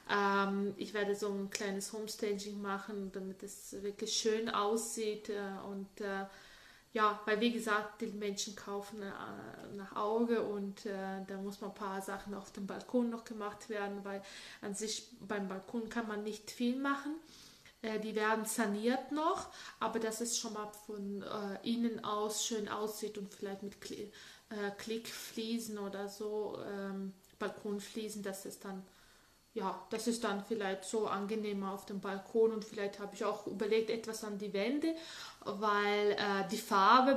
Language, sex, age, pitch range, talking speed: German, female, 20-39, 200-225 Hz, 150 wpm